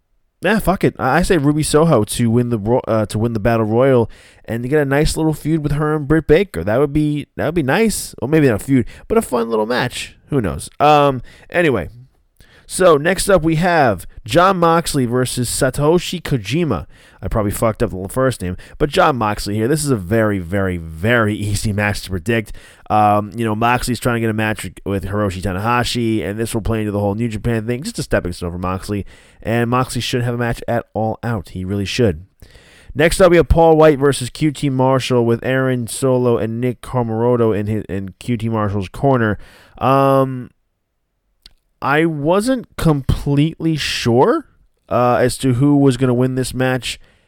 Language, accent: English, American